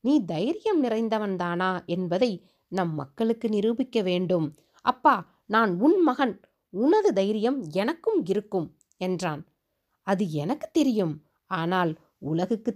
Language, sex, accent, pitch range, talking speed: Tamil, female, native, 175-260 Hz, 110 wpm